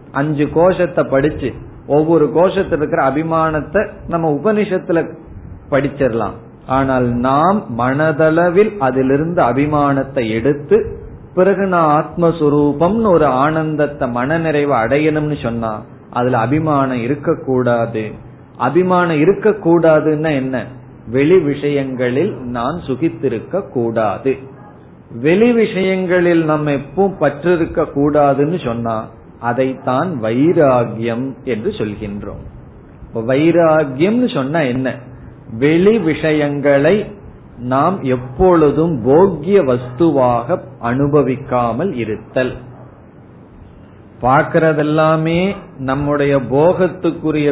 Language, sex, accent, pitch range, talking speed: Tamil, male, native, 125-165 Hz, 80 wpm